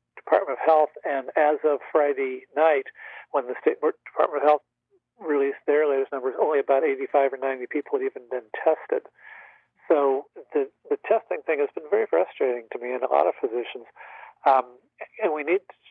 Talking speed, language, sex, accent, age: 185 wpm, English, male, American, 40-59